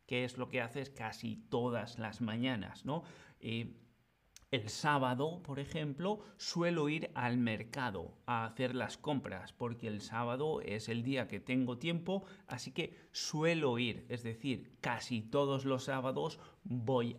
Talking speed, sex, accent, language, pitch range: 150 wpm, male, Spanish, Spanish, 120-155 Hz